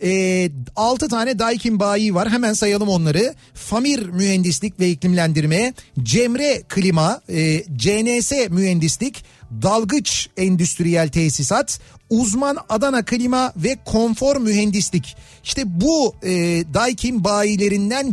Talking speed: 105 wpm